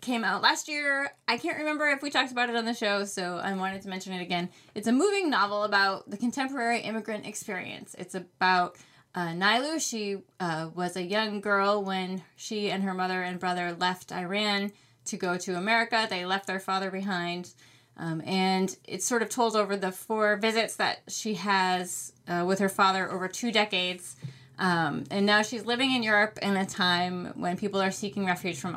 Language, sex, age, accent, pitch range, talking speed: English, female, 20-39, American, 180-220 Hz, 200 wpm